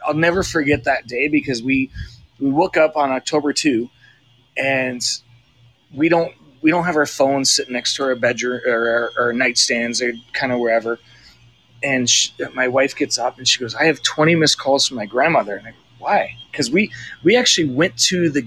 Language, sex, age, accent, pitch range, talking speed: English, male, 30-49, American, 120-150 Hz, 200 wpm